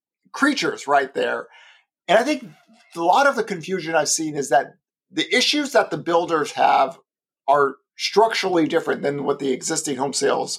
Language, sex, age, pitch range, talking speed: English, male, 50-69, 160-255 Hz, 170 wpm